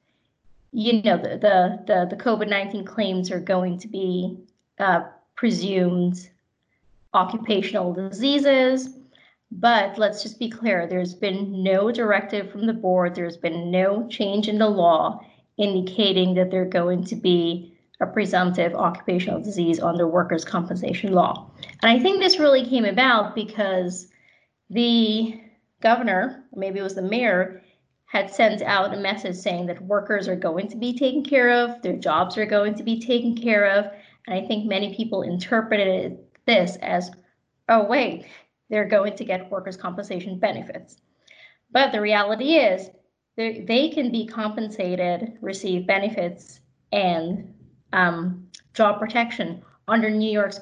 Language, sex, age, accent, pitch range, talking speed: English, female, 30-49, American, 185-225 Hz, 145 wpm